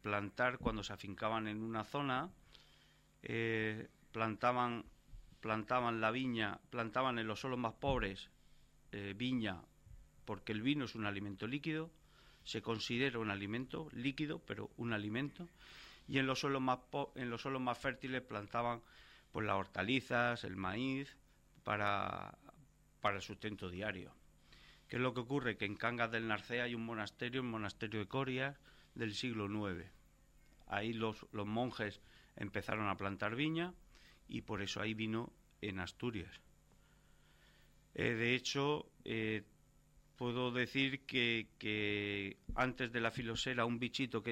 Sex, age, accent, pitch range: male, 40-59, Spanish, 105-125 Hz